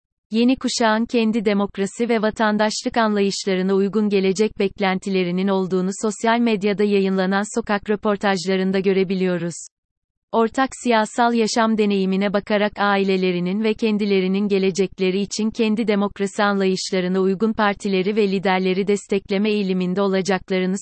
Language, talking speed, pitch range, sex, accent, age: Turkish, 105 wpm, 190-220 Hz, female, native, 30-49